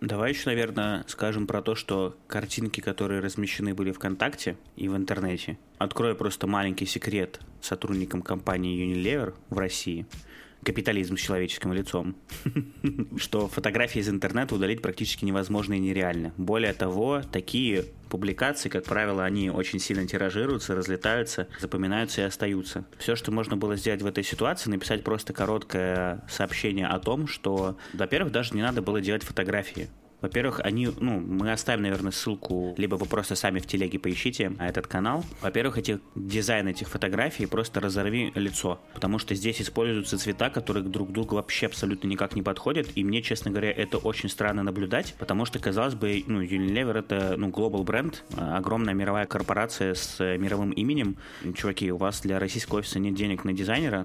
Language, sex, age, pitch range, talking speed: Russian, male, 20-39, 95-110 Hz, 165 wpm